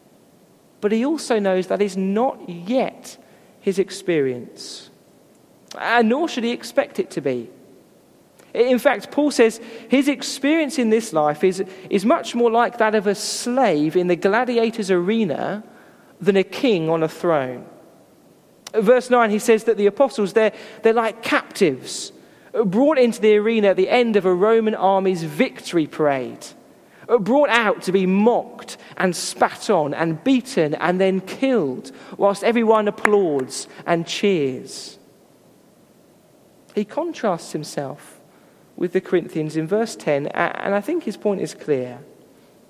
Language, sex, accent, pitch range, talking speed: English, male, British, 185-240 Hz, 145 wpm